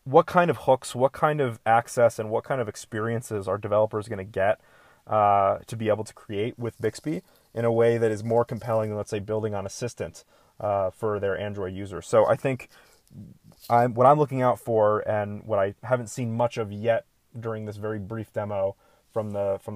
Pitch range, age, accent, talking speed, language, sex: 105-120 Hz, 30-49, American, 200 wpm, English, male